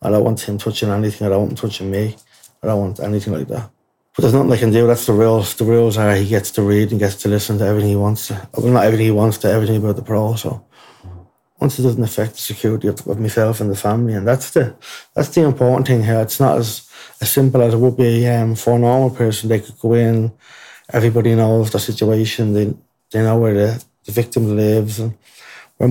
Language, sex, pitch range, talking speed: English, male, 105-120 Hz, 245 wpm